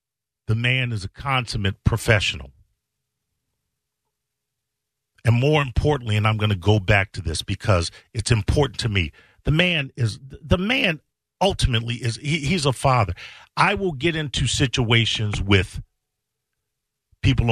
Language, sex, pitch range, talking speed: English, male, 95-125 Hz, 135 wpm